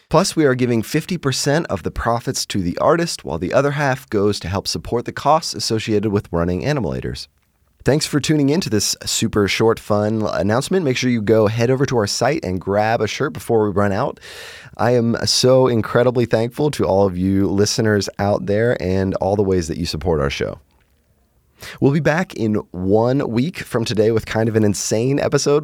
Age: 30-49